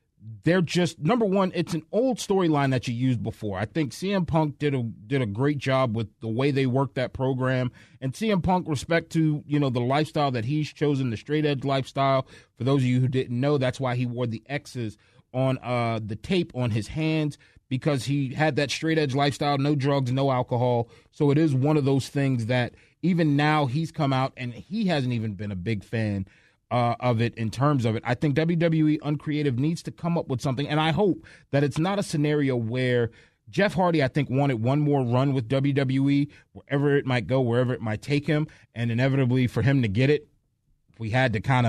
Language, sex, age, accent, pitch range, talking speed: English, male, 30-49, American, 120-150 Hz, 220 wpm